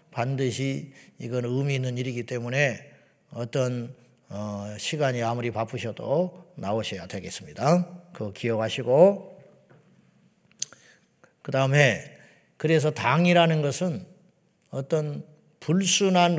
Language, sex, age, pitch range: Korean, male, 40-59, 120-155 Hz